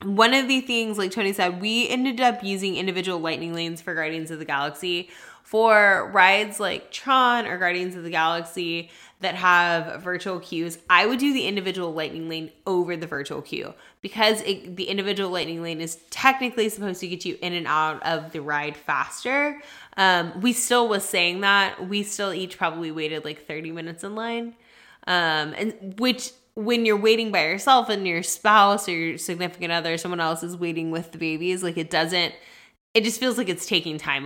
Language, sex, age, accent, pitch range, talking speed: English, female, 10-29, American, 165-205 Hz, 195 wpm